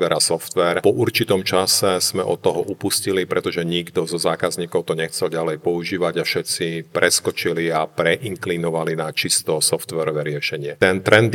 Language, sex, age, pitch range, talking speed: Slovak, male, 40-59, 80-90 Hz, 155 wpm